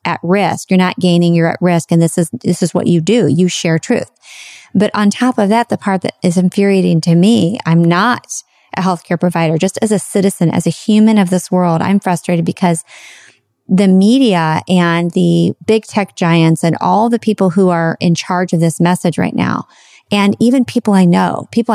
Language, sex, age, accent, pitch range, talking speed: English, female, 30-49, American, 180-230 Hz, 205 wpm